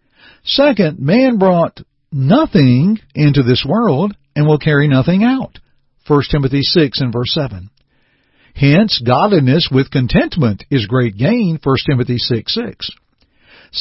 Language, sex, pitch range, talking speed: English, male, 125-180 Hz, 120 wpm